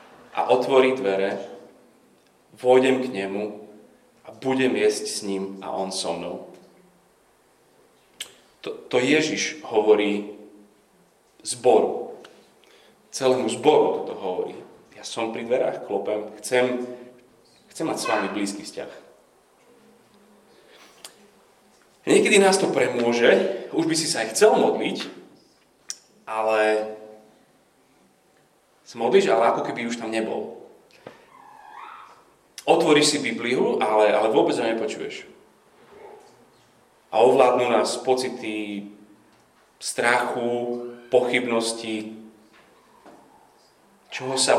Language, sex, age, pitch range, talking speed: Slovak, male, 30-49, 105-150 Hz, 95 wpm